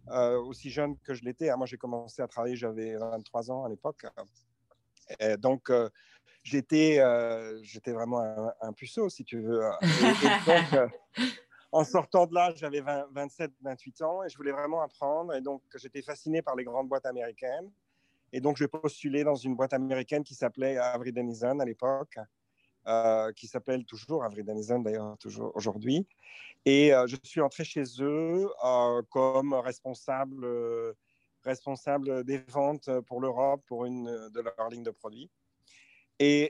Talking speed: 165 wpm